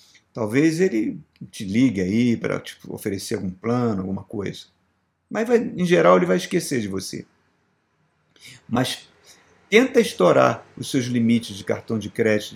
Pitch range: 105-155 Hz